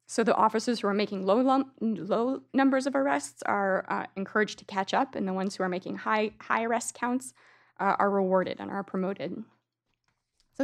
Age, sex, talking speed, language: 20-39, female, 190 wpm, English